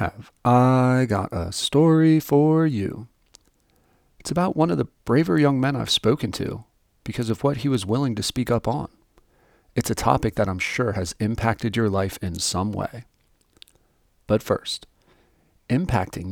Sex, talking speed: male, 160 wpm